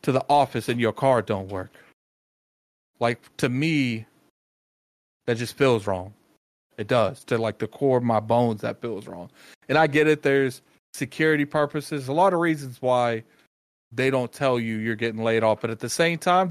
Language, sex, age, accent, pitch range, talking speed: English, male, 30-49, American, 120-155 Hz, 190 wpm